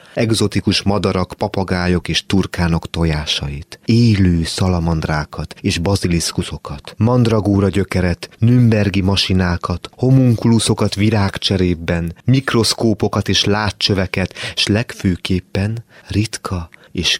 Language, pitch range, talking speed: Hungarian, 75-100 Hz, 80 wpm